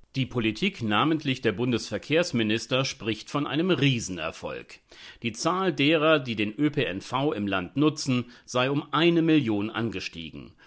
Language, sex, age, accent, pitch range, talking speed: German, male, 40-59, German, 110-155 Hz, 130 wpm